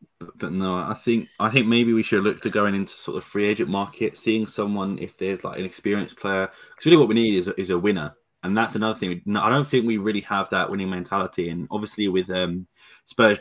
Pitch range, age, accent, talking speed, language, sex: 95-110 Hz, 20-39, British, 240 wpm, English, male